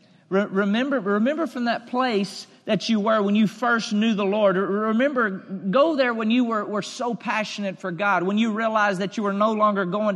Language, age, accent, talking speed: English, 40-59, American, 200 wpm